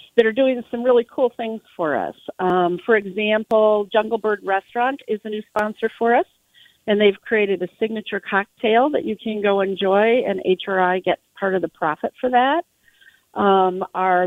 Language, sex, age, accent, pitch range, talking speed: English, female, 40-59, American, 185-235 Hz, 180 wpm